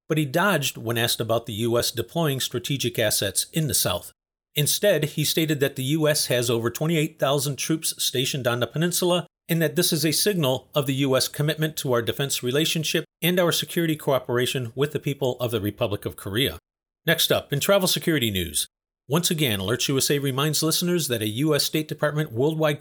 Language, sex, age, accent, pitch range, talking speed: English, male, 40-59, American, 125-160 Hz, 190 wpm